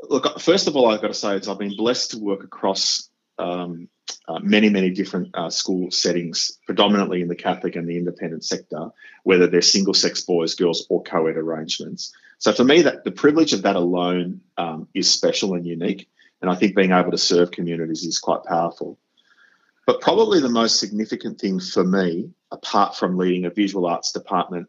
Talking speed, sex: 190 wpm, male